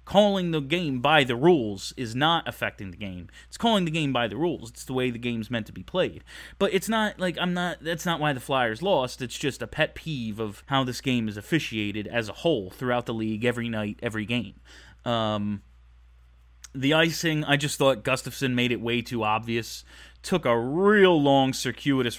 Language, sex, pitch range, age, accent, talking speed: English, male, 110-145 Hz, 30-49, American, 210 wpm